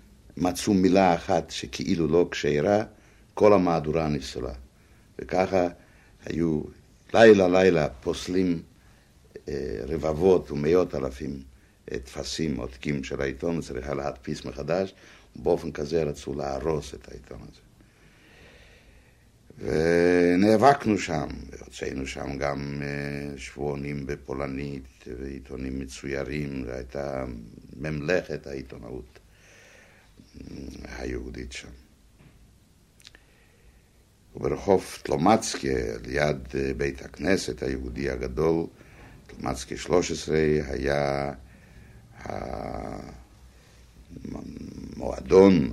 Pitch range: 65-85 Hz